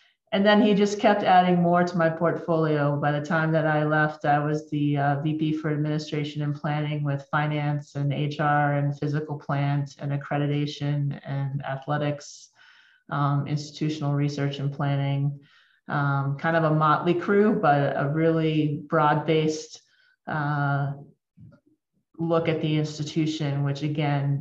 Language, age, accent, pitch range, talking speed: English, 30-49, American, 145-165 Hz, 145 wpm